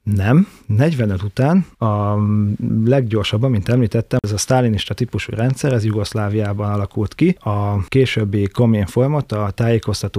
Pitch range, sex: 100-120 Hz, male